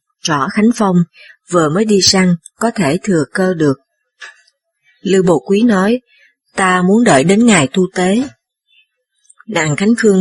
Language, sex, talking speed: Vietnamese, female, 155 wpm